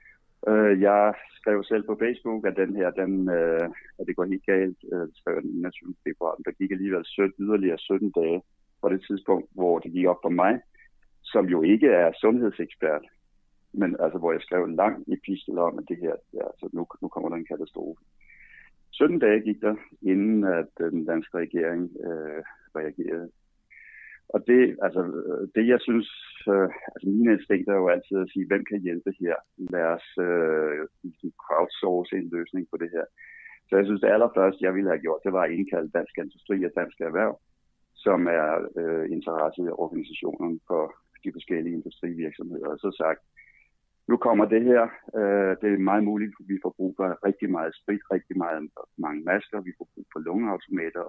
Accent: native